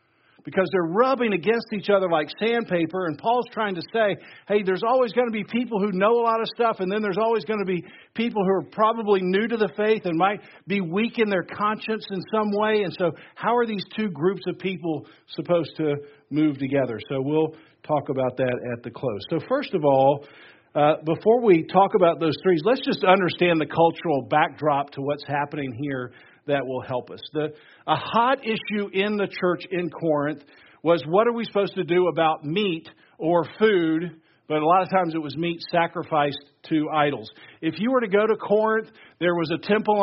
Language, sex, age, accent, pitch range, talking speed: English, male, 50-69, American, 160-210 Hz, 205 wpm